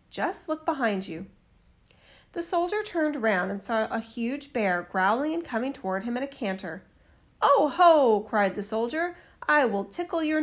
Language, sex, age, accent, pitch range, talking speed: English, female, 40-59, American, 195-280 Hz, 175 wpm